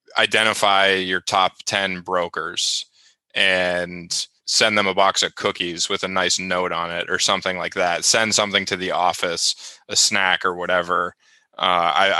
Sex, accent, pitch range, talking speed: male, American, 90-100 Hz, 155 wpm